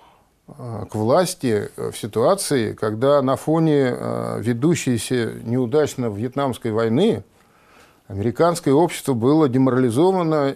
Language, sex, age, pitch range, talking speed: Russian, male, 50-69, 115-160 Hz, 85 wpm